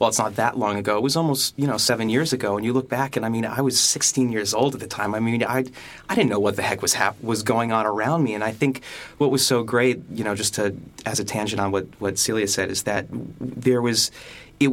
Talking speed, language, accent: 280 wpm, English, American